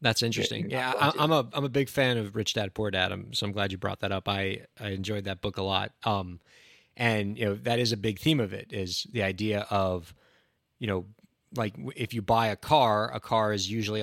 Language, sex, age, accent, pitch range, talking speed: English, male, 20-39, American, 105-130 Hz, 235 wpm